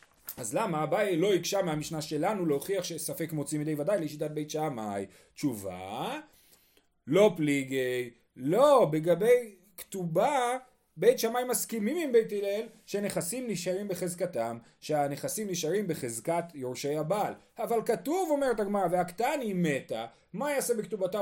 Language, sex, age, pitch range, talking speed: Hebrew, male, 30-49, 155-230 Hz, 125 wpm